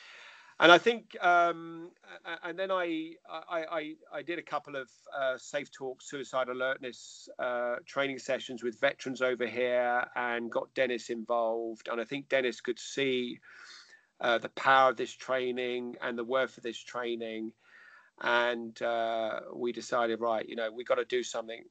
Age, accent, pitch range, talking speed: 40-59, British, 115-135 Hz, 165 wpm